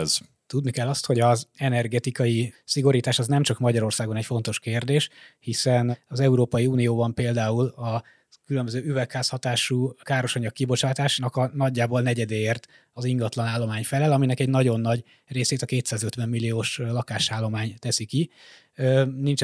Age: 20-39